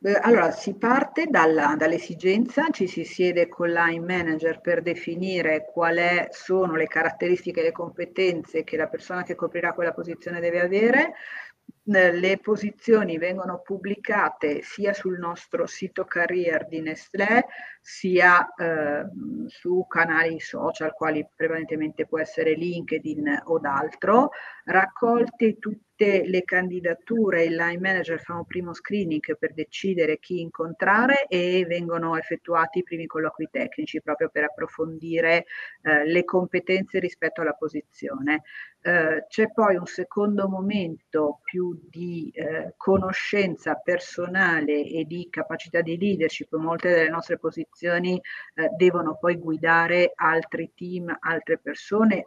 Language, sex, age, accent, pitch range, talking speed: Italian, female, 50-69, native, 160-190 Hz, 125 wpm